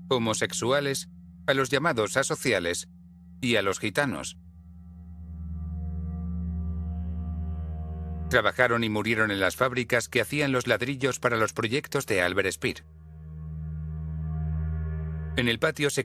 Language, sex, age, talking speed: Spanish, male, 40-59, 110 wpm